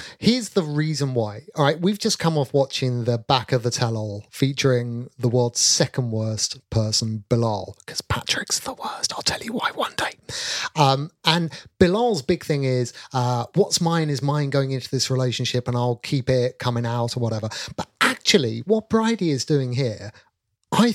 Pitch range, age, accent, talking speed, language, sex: 120-165 Hz, 30-49, British, 185 wpm, English, male